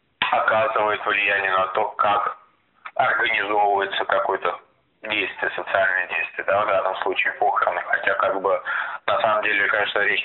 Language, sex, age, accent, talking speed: Russian, male, 20-39, native, 135 wpm